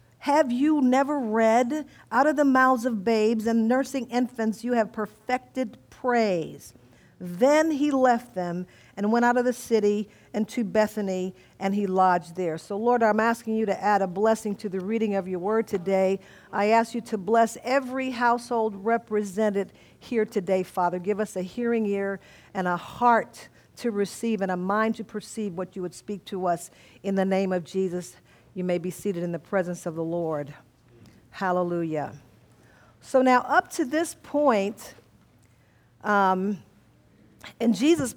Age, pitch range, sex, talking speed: 50-69, 195-255 Hz, female, 170 wpm